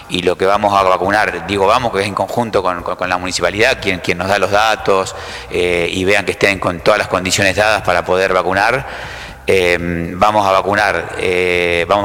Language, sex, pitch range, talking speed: English, male, 90-110 Hz, 210 wpm